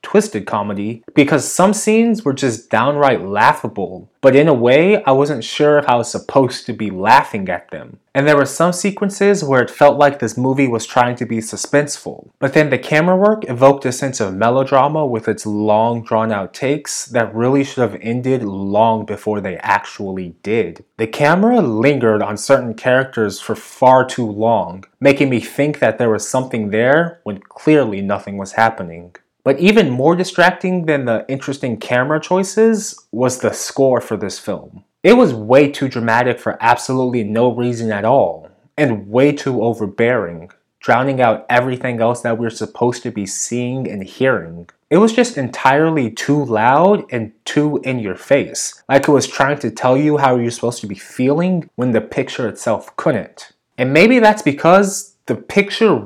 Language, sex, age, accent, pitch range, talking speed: English, male, 20-39, American, 115-145 Hz, 180 wpm